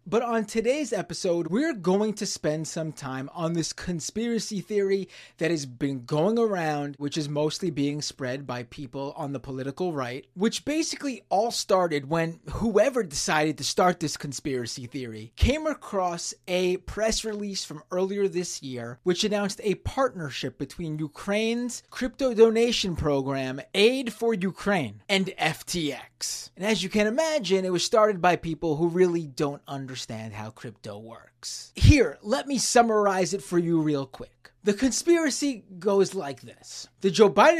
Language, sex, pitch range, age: English, male, 145-220 Hz, 30-49